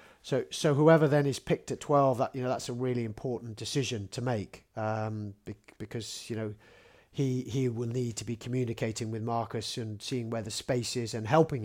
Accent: British